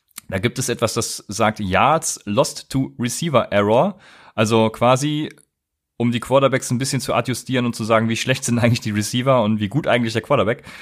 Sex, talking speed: male, 195 wpm